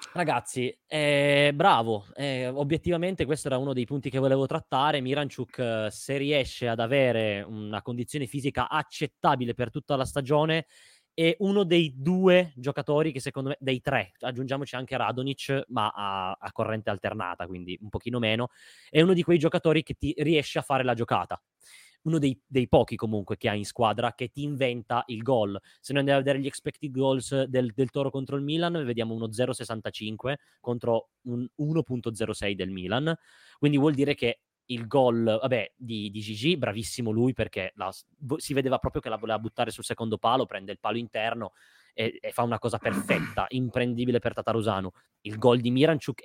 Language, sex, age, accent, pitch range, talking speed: Italian, male, 20-39, native, 115-145 Hz, 175 wpm